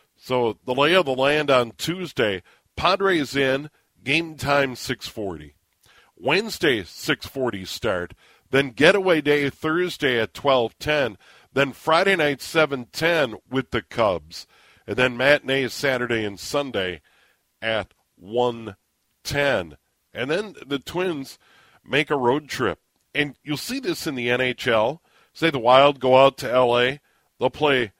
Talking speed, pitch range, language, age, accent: 130 wpm, 115-145 Hz, English, 50-69, American